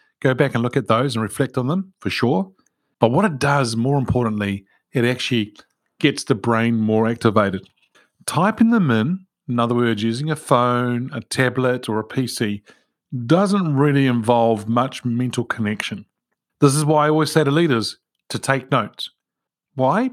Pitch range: 115-150 Hz